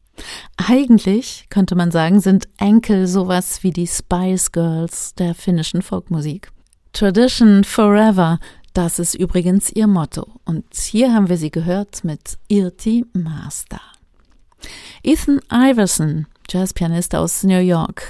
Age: 40-59